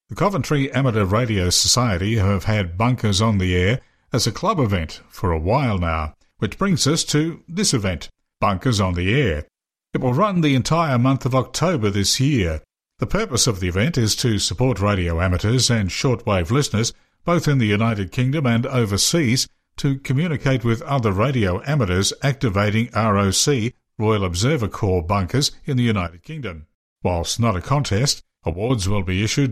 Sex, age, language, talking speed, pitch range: male, 60-79, English, 170 wpm, 100-135 Hz